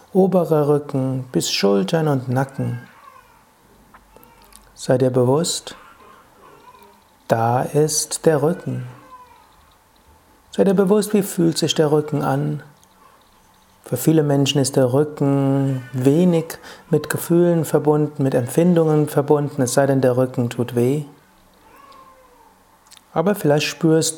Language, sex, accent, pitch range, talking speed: German, male, German, 135-180 Hz, 110 wpm